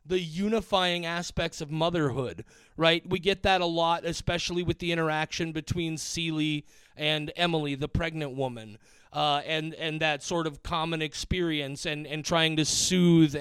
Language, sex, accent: English, male, American